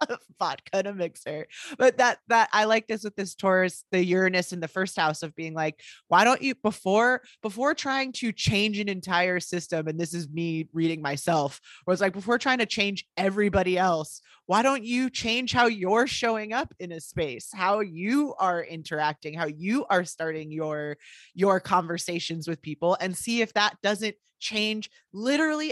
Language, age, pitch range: English, 20-39, 165-215 Hz